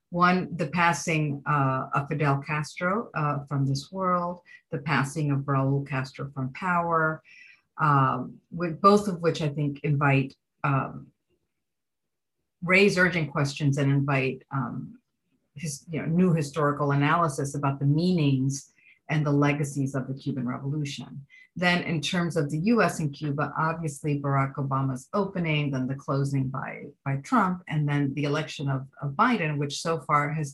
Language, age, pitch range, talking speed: English, 50-69, 140-165 Hz, 155 wpm